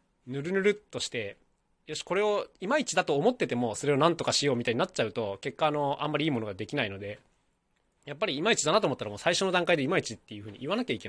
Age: 20-39